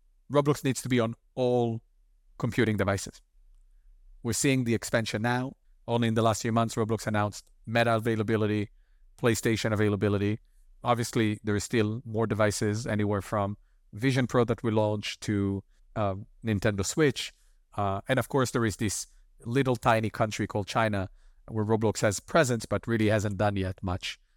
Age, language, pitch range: 40-59, English, 105-125 Hz